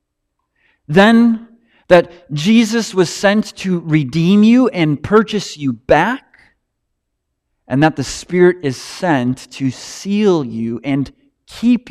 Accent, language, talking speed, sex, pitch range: American, English, 115 wpm, male, 155-215 Hz